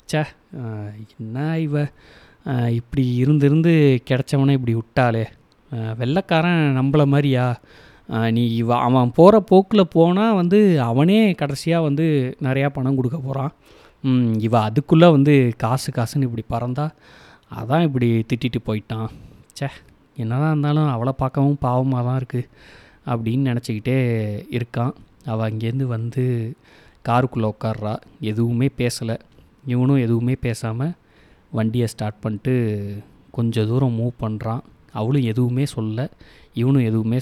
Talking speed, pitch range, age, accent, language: 110 wpm, 115-140 Hz, 20-39, native, Tamil